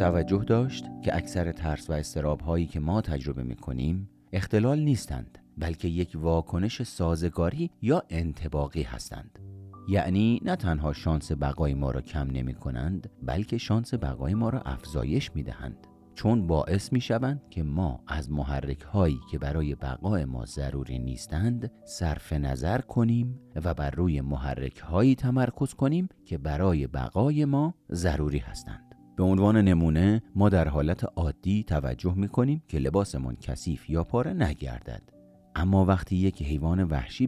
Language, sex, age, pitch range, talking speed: Persian, male, 40-59, 70-105 Hz, 145 wpm